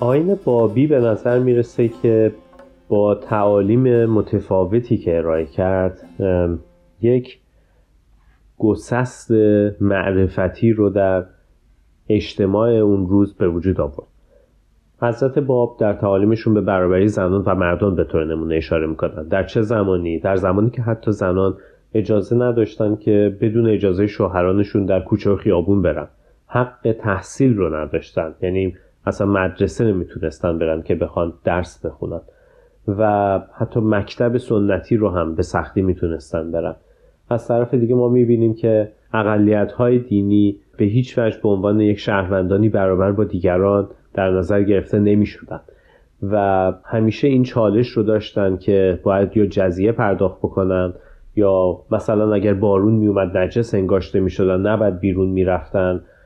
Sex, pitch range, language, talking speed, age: male, 95-110 Hz, Persian, 135 wpm, 30-49